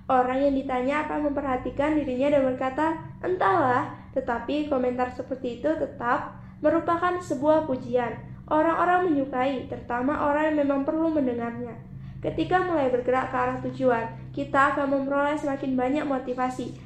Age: 20-39